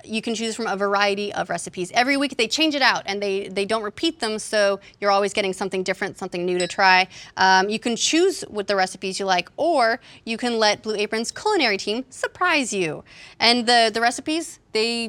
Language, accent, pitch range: English, American, 195-245 Hz